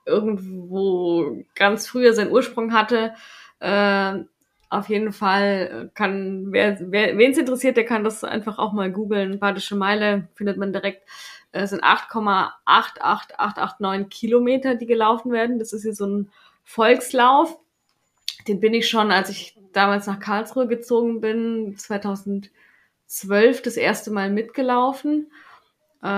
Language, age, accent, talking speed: German, 20-39, German, 135 wpm